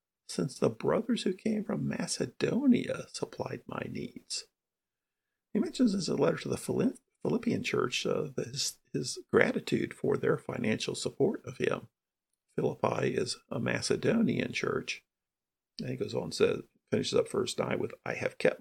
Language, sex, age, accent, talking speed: English, male, 50-69, American, 160 wpm